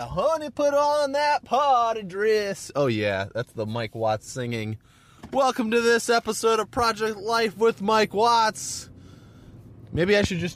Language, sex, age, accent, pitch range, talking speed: English, male, 30-49, American, 105-160 Hz, 155 wpm